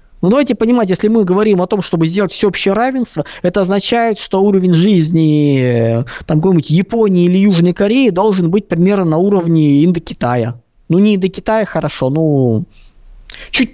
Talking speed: 155 wpm